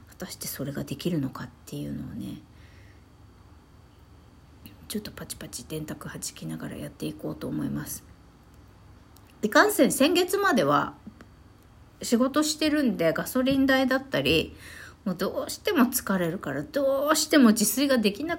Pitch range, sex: 145-245 Hz, female